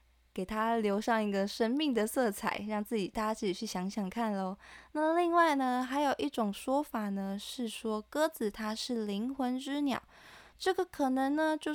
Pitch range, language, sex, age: 210-275 Hz, Chinese, female, 20-39